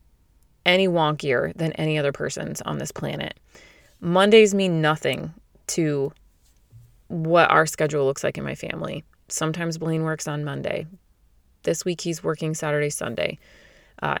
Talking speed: 140 wpm